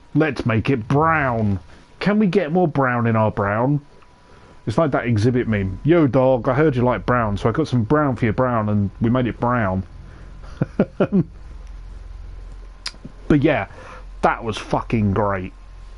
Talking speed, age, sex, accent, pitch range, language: 160 wpm, 30-49, male, British, 100-125 Hz, English